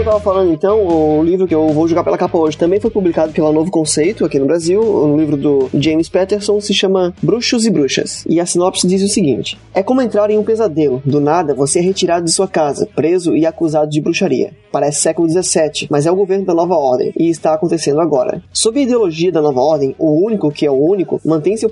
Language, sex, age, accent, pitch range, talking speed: Portuguese, male, 20-39, Brazilian, 160-205 Hz, 235 wpm